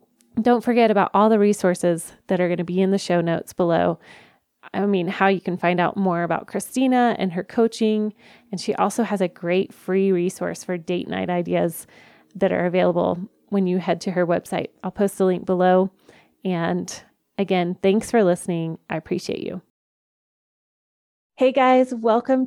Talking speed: 175 wpm